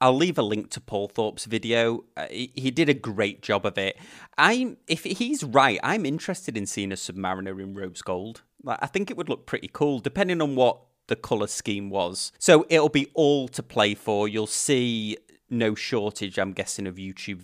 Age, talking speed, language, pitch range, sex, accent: 30-49, 205 wpm, English, 100-130 Hz, male, British